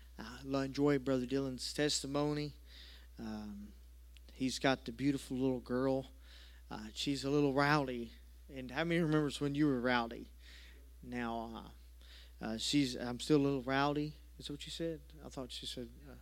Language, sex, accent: English, male, American